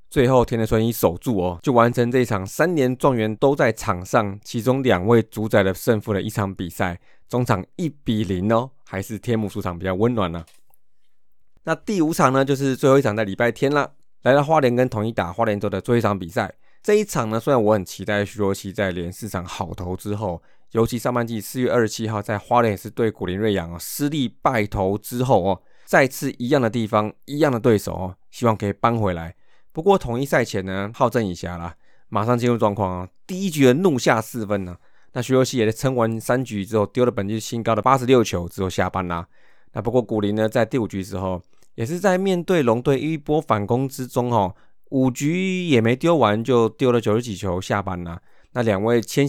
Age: 20-39